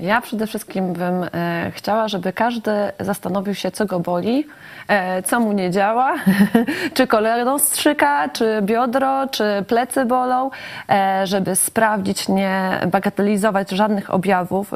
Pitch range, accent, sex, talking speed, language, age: 180-215 Hz, native, female, 125 wpm, Polish, 20-39